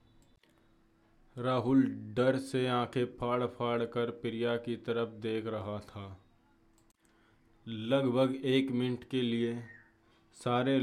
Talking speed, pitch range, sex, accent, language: 105 wpm, 110-125 Hz, male, native, Hindi